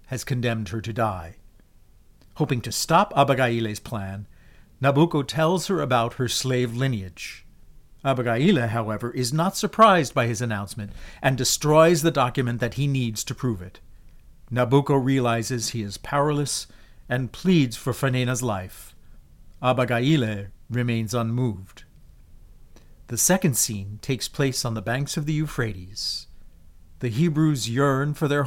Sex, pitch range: male, 100-140 Hz